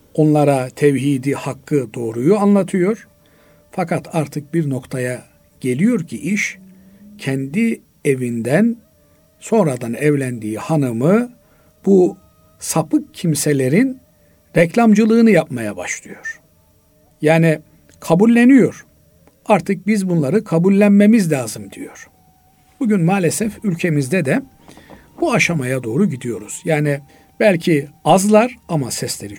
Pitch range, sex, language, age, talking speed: 140-210 Hz, male, Turkish, 60-79, 90 wpm